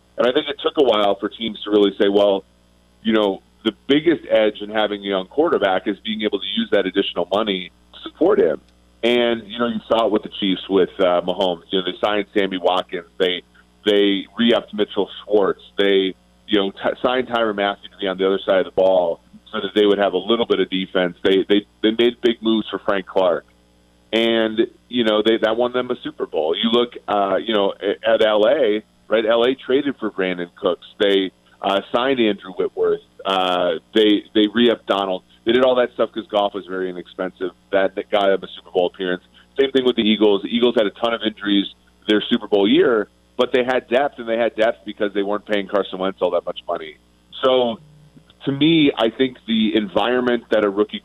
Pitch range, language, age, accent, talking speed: 95-115 Hz, English, 30-49, American, 220 wpm